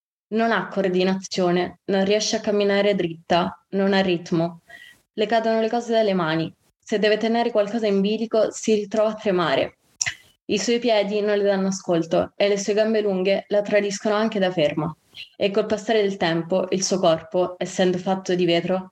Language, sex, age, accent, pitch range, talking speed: Italian, female, 20-39, native, 180-215 Hz, 180 wpm